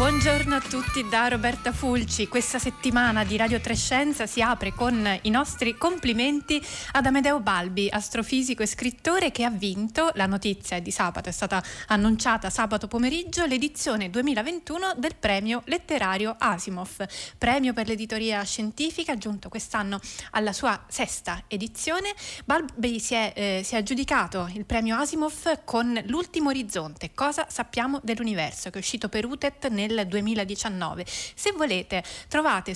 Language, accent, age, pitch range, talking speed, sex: Italian, native, 20-39, 205-265 Hz, 145 wpm, female